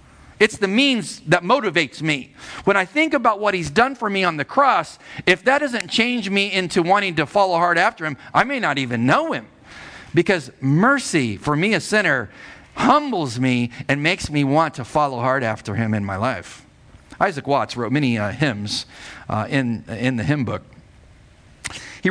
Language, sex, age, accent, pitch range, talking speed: English, male, 50-69, American, 110-150 Hz, 185 wpm